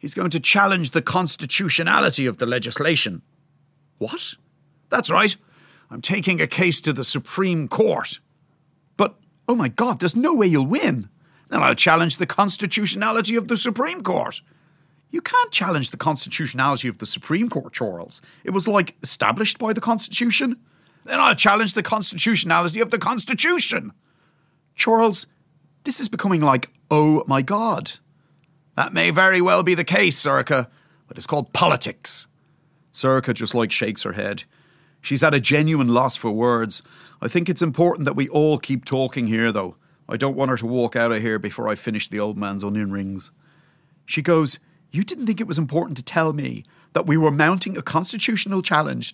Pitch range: 135-190 Hz